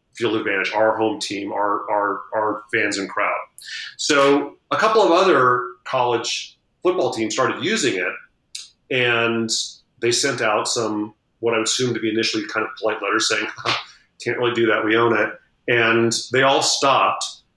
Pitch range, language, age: 110-125 Hz, English, 40-59